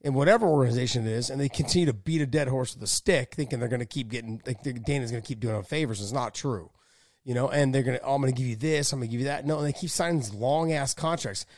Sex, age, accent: male, 30-49, American